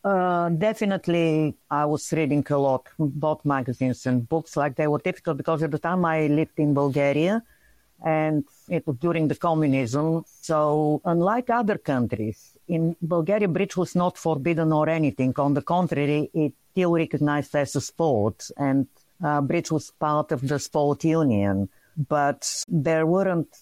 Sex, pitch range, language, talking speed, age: female, 125-155 Hz, English, 160 wpm, 50-69